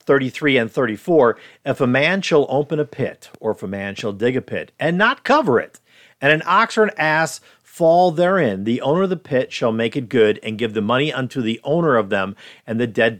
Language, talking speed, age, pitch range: English, 230 wpm, 50-69, 120-175 Hz